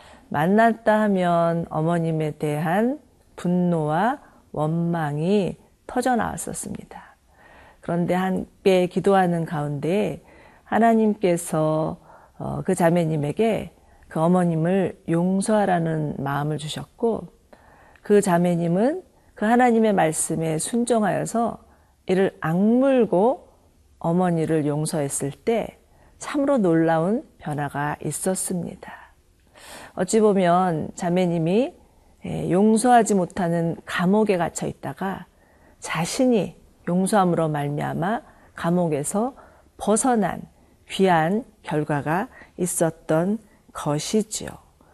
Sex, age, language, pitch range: female, 40-59, Korean, 165-215 Hz